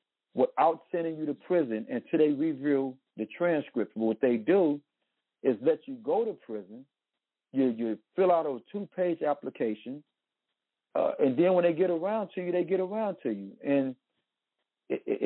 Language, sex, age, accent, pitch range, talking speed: English, male, 50-69, American, 130-170 Hz, 175 wpm